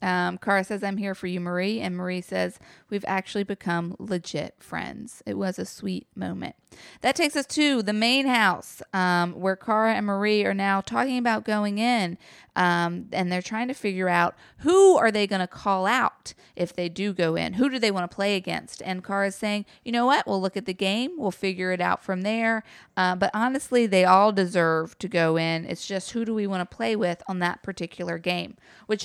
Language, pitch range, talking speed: English, 180-225 Hz, 215 wpm